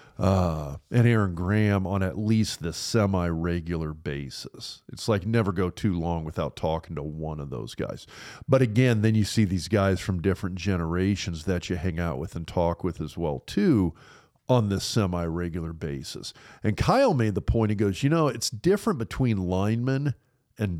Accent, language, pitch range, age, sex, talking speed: American, English, 90-115 Hz, 40-59, male, 180 wpm